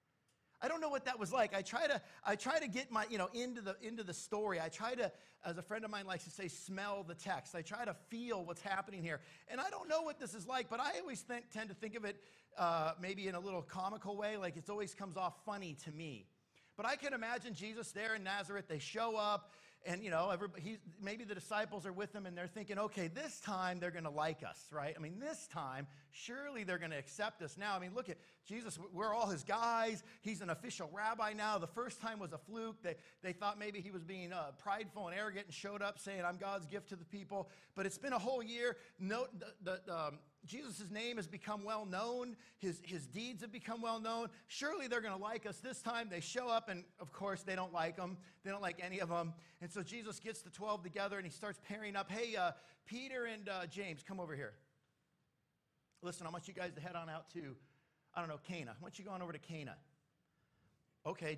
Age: 50-69